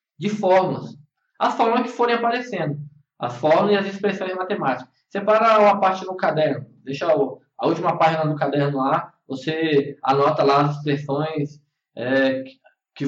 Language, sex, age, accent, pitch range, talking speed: Portuguese, male, 10-29, Brazilian, 140-200 Hz, 145 wpm